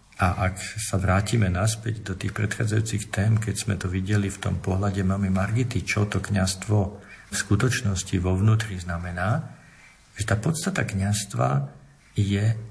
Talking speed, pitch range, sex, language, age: 145 wpm, 95-110 Hz, male, Slovak, 50-69